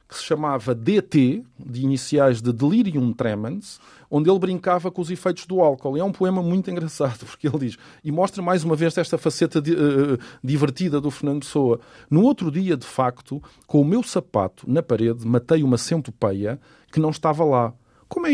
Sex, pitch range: male, 120-170 Hz